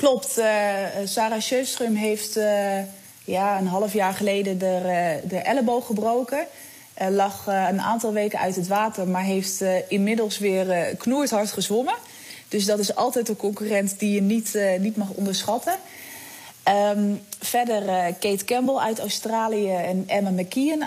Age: 20-39